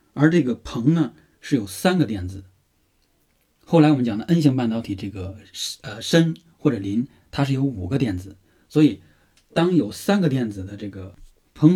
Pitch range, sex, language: 95-145 Hz, male, Chinese